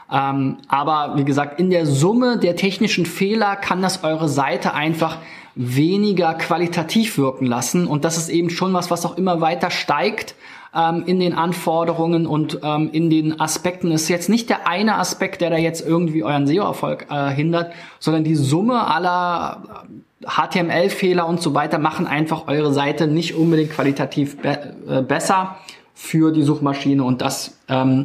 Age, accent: 20-39, German